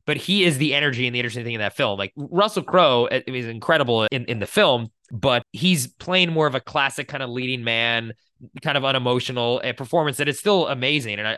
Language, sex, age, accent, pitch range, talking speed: English, male, 20-39, American, 110-135 Hz, 215 wpm